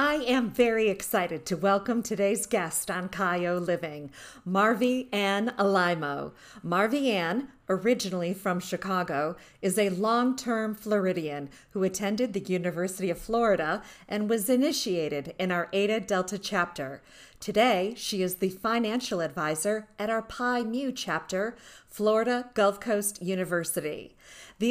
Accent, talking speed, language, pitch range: American, 130 wpm, English, 185-245 Hz